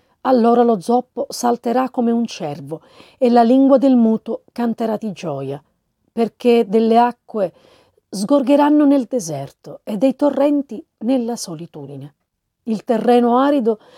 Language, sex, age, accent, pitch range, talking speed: Italian, female, 40-59, native, 180-250 Hz, 125 wpm